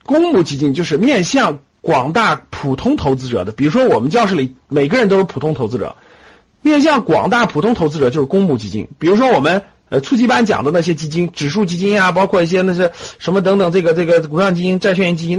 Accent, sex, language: native, male, Chinese